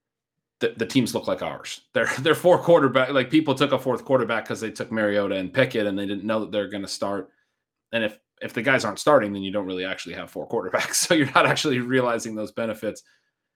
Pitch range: 105-140 Hz